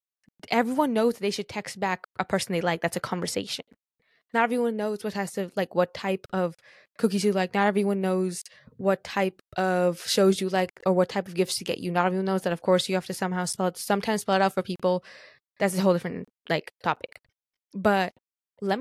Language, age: English, 10-29